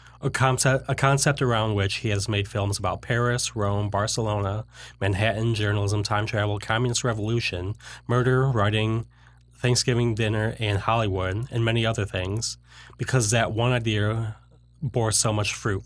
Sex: male